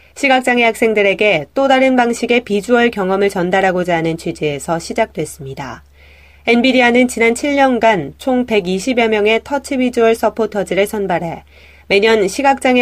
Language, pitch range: Korean, 175-240 Hz